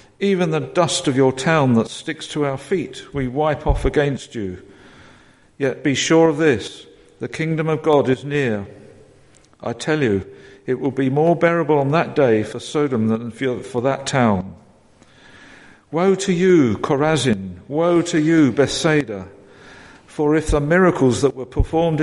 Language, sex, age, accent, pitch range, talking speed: English, male, 50-69, British, 120-155 Hz, 160 wpm